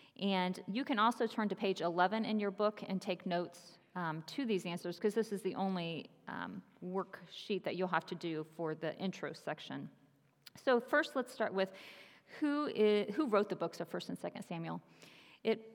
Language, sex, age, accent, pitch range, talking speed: English, female, 40-59, American, 185-235 Hz, 195 wpm